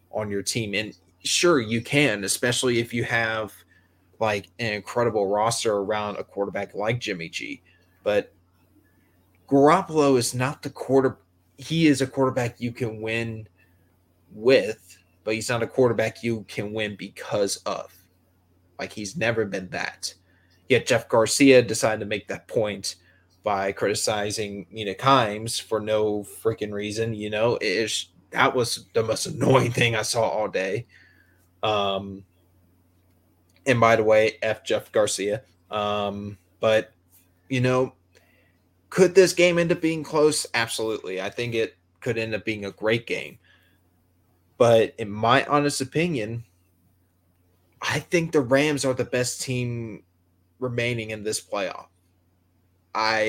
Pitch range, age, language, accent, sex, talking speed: 90-125 Hz, 20-39, English, American, male, 145 wpm